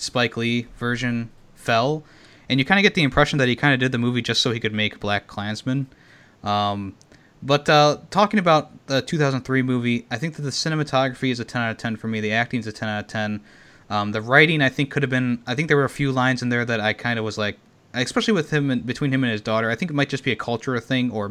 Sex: male